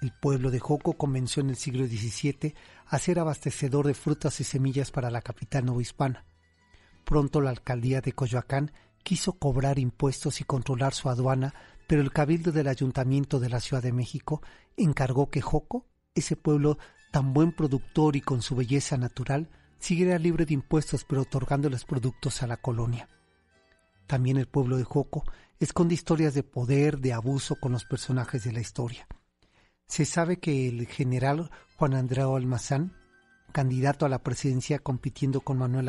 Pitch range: 130-150 Hz